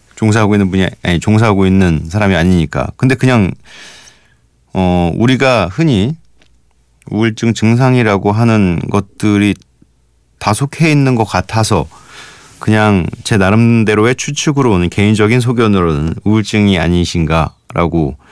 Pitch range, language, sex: 85-115 Hz, Korean, male